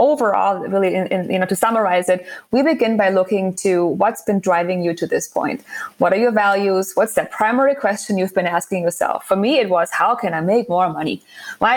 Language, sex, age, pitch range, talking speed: English, female, 20-39, 185-235 Hz, 225 wpm